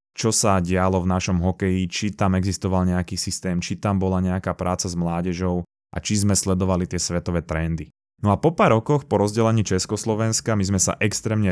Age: 20-39